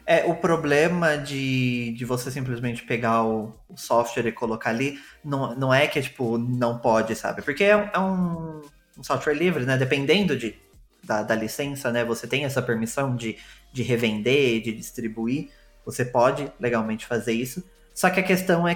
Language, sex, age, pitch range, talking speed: Portuguese, male, 20-39, 120-160 Hz, 175 wpm